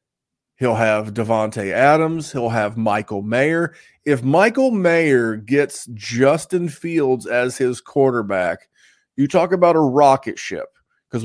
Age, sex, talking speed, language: 30-49, male, 130 wpm, English